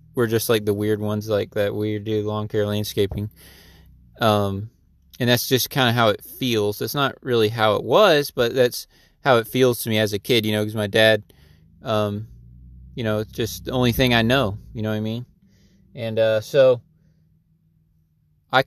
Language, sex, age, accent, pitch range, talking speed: English, male, 20-39, American, 105-120 Hz, 200 wpm